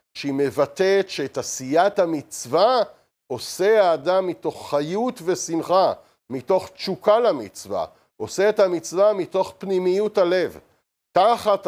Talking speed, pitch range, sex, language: 105 wpm, 155-195 Hz, male, Hebrew